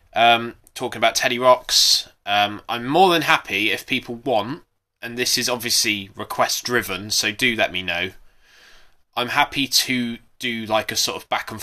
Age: 20-39